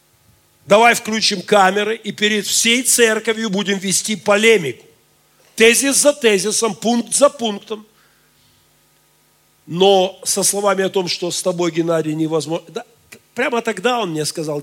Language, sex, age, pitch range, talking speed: Russian, male, 40-59, 185-255 Hz, 125 wpm